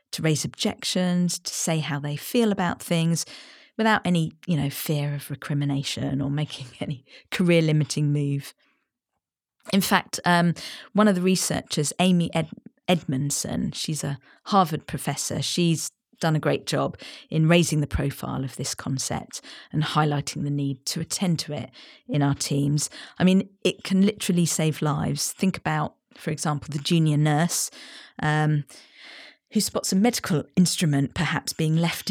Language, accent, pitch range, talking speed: English, British, 145-180 Hz, 155 wpm